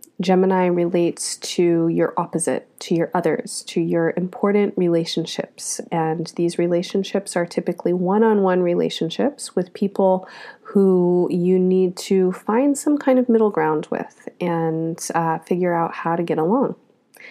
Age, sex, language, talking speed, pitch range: 30-49, female, English, 145 wpm, 170-210 Hz